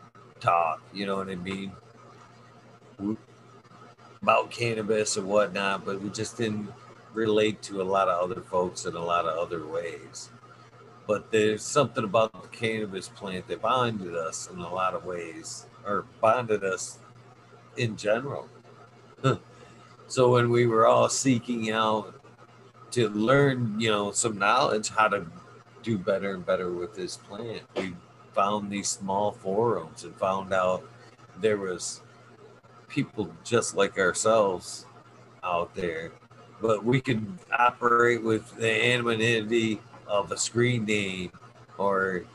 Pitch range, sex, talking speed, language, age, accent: 100-120 Hz, male, 135 wpm, English, 50-69, American